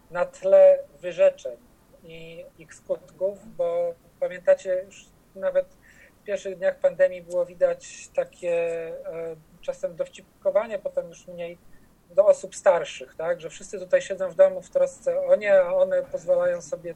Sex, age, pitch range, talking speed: male, 40-59, 175-275 Hz, 140 wpm